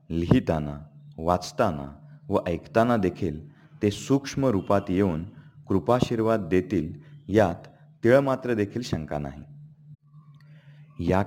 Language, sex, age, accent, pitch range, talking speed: Marathi, male, 40-59, native, 90-145 Hz, 90 wpm